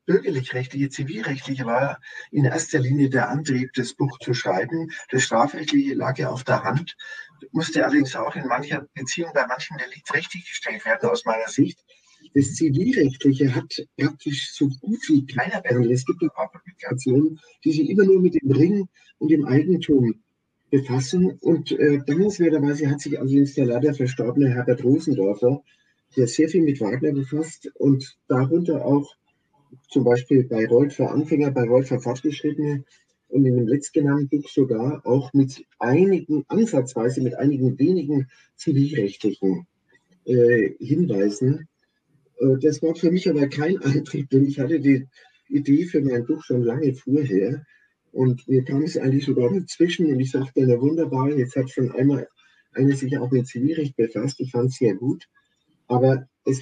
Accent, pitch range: German, 130-155 Hz